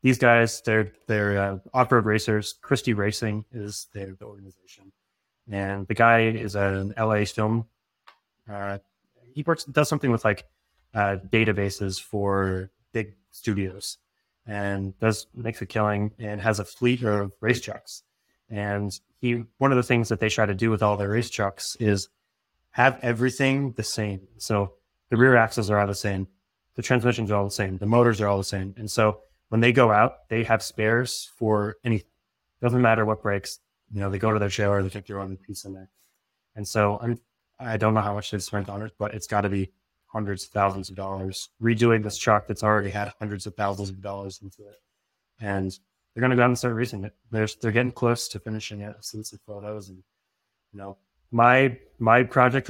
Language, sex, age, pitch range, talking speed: English, male, 20-39, 100-115 Hz, 200 wpm